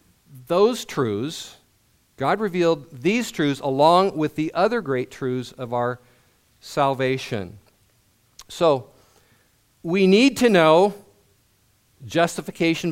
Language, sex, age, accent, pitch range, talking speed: English, male, 50-69, American, 130-175 Hz, 100 wpm